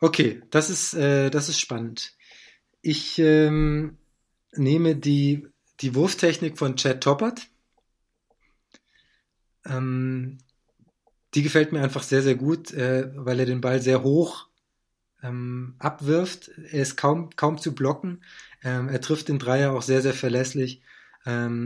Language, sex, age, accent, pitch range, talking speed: German, male, 20-39, German, 125-150 Hz, 135 wpm